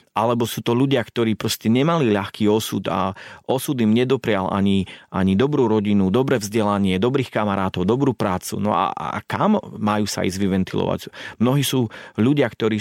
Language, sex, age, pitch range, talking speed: Slovak, male, 30-49, 100-115 Hz, 165 wpm